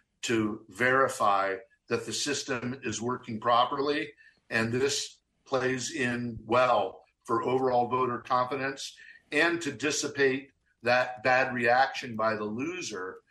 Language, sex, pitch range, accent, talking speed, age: English, male, 115-135 Hz, American, 115 wpm, 50-69